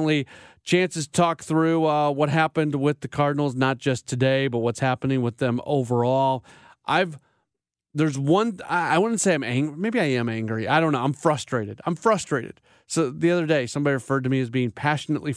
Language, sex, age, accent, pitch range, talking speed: English, male, 30-49, American, 125-165 Hz, 190 wpm